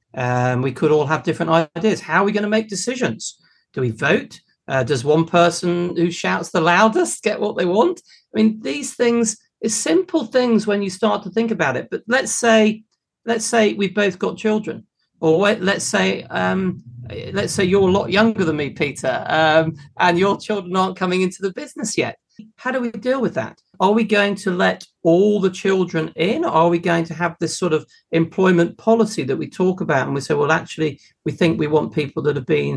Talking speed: 220 wpm